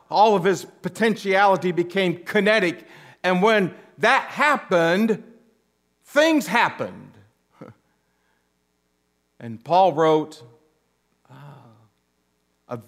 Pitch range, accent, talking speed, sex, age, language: 140-215 Hz, American, 75 wpm, male, 50-69, English